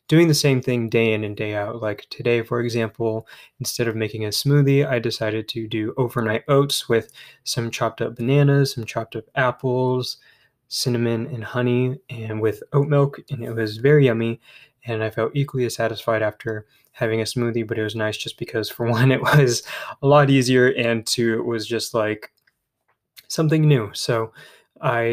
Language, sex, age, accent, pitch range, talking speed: English, male, 20-39, American, 115-135 Hz, 185 wpm